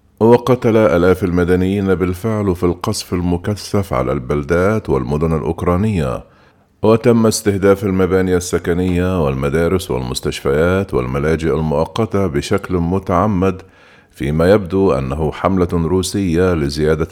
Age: 50-69